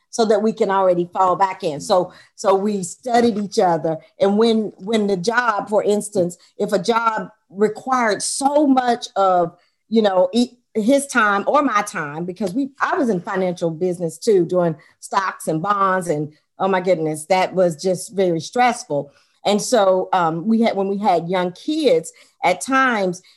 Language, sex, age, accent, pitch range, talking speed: English, female, 40-59, American, 185-245 Hz, 175 wpm